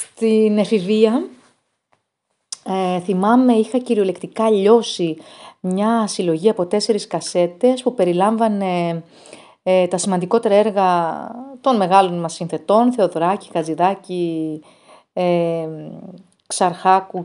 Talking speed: 80 wpm